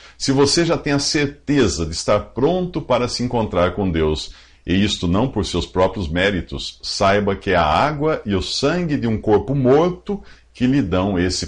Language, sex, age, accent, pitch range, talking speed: English, male, 50-69, Brazilian, 85-135 Hz, 195 wpm